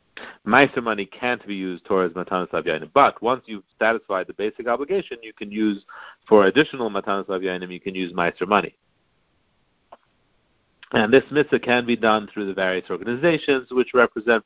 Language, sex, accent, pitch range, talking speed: English, male, American, 95-120 Hz, 160 wpm